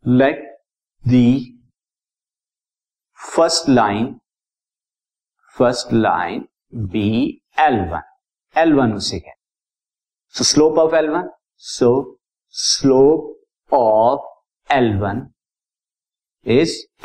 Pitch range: 120-155 Hz